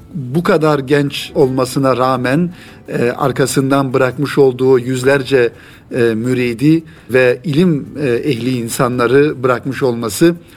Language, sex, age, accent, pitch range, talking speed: Turkish, male, 50-69, native, 130-160 Hz, 110 wpm